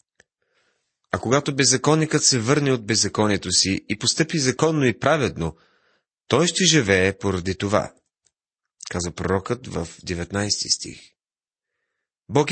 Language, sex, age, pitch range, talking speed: Bulgarian, male, 30-49, 100-145 Hz, 115 wpm